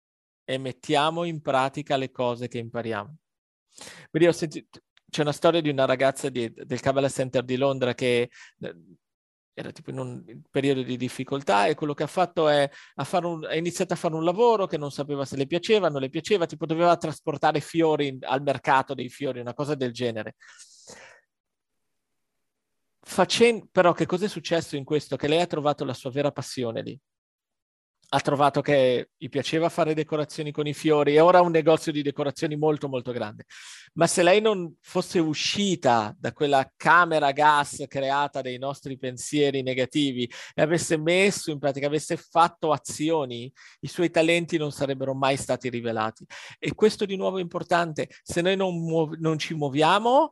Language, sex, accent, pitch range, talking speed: Italian, male, native, 135-170 Hz, 170 wpm